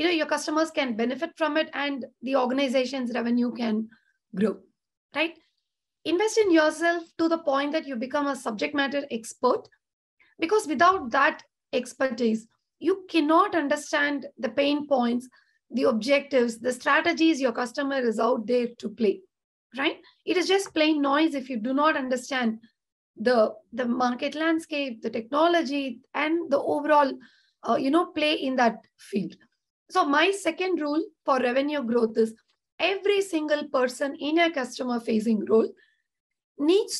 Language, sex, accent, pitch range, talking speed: English, female, Indian, 250-330 Hz, 150 wpm